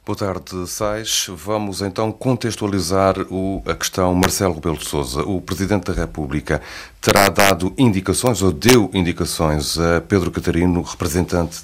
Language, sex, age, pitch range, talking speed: Portuguese, male, 40-59, 80-95 Hz, 135 wpm